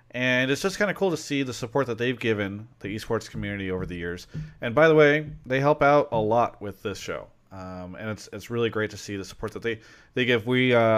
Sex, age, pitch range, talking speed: male, 30-49, 100-130 Hz, 255 wpm